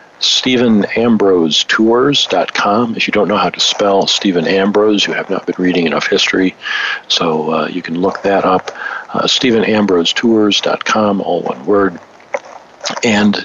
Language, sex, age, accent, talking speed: English, male, 50-69, American, 135 wpm